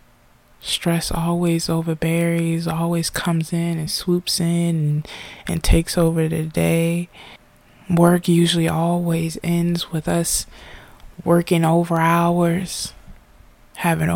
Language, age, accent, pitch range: English, 20-39, American, 150-170 Hz